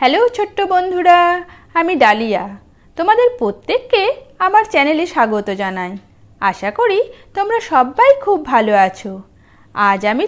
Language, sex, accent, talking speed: Bengali, female, native, 115 wpm